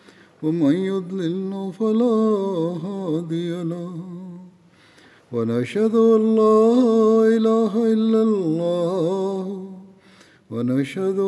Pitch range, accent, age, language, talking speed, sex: 170-220 Hz, native, 50-69, Bengali, 60 wpm, male